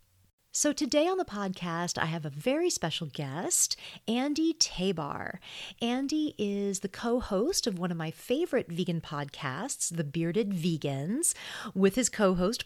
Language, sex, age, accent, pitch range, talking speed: English, female, 40-59, American, 160-230 Hz, 140 wpm